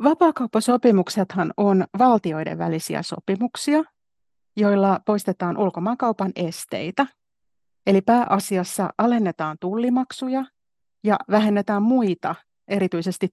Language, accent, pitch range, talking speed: Finnish, native, 175-225 Hz, 75 wpm